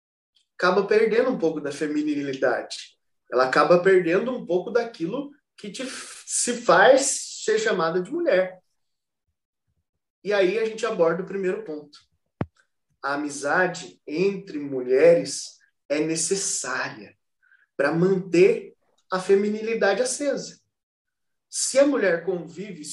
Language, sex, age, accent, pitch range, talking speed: Portuguese, male, 20-39, Brazilian, 160-255 Hz, 115 wpm